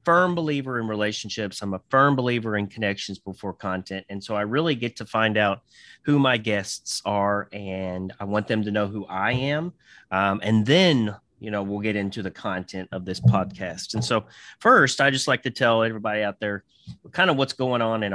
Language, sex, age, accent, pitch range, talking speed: English, male, 30-49, American, 100-135 Hz, 210 wpm